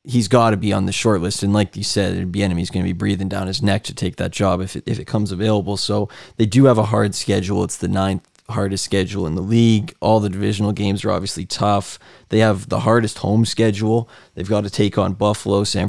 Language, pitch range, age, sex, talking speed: English, 100-110 Hz, 20-39, male, 245 wpm